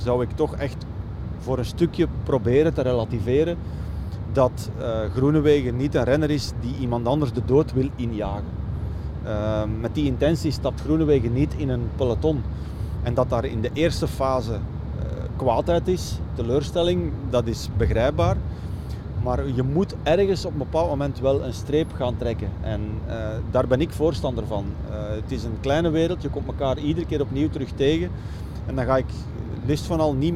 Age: 30-49